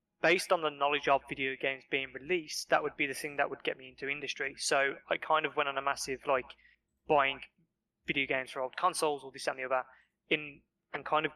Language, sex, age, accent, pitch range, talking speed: English, male, 20-39, British, 135-165 Hz, 230 wpm